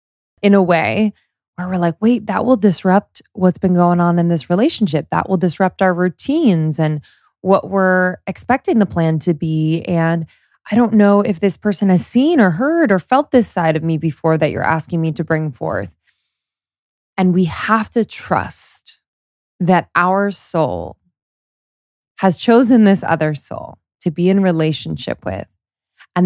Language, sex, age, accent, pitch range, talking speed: English, female, 20-39, American, 155-190 Hz, 170 wpm